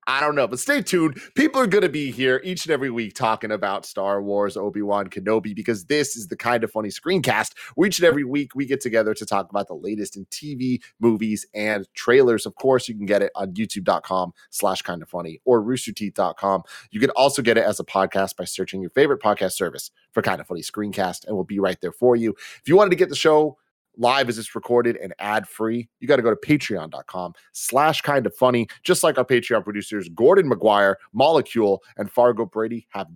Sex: male